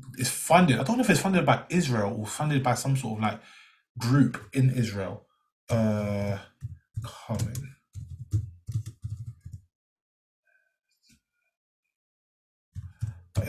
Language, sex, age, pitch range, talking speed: English, male, 20-39, 110-135 Hz, 100 wpm